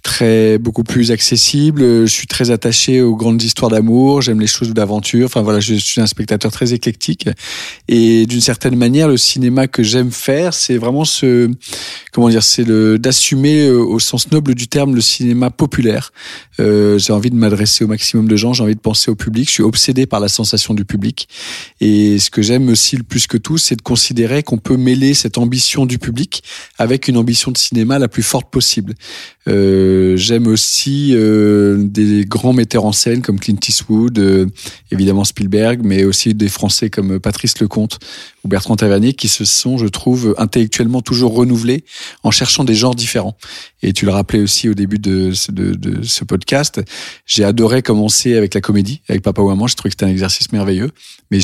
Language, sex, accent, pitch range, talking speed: French, male, French, 105-125 Hz, 195 wpm